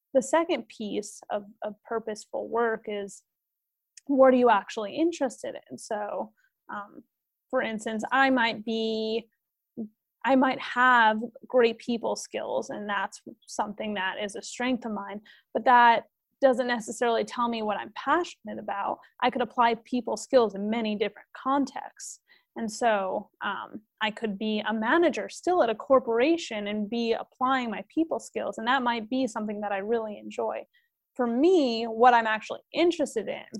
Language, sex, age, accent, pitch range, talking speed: English, female, 30-49, American, 215-260 Hz, 160 wpm